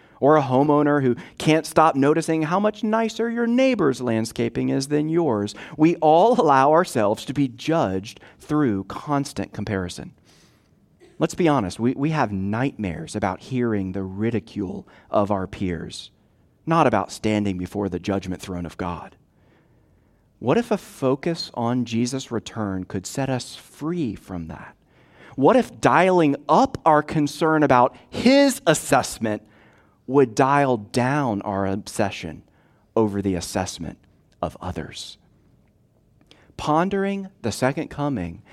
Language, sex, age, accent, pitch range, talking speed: English, male, 40-59, American, 100-145 Hz, 130 wpm